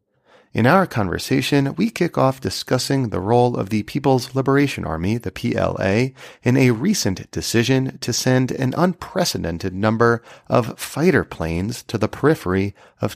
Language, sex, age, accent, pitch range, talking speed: English, male, 40-59, American, 100-140 Hz, 145 wpm